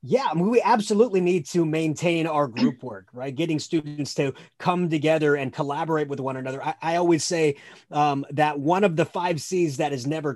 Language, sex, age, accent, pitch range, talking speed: English, male, 30-49, American, 145-210 Hz, 195 wpm